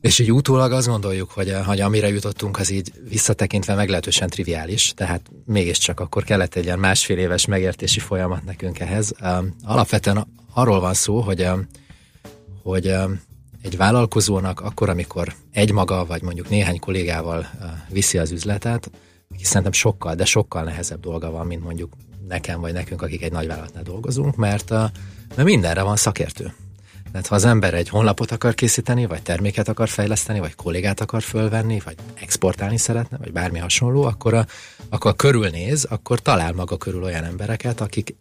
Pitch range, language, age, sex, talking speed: 90-110 Hz, Hungarian, 30-49, male, 155 wpm